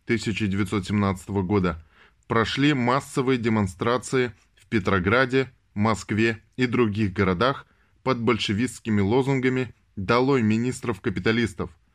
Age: 20-39